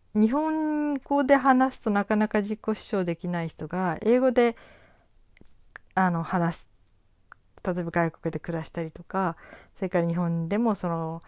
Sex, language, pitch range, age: female, Japanese, 155-205 Hz, 40-59